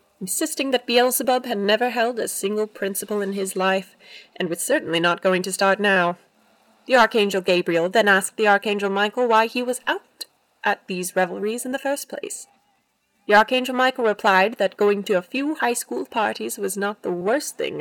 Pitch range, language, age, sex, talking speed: 195-250 Hz, English, 20-39, female, 190 wpm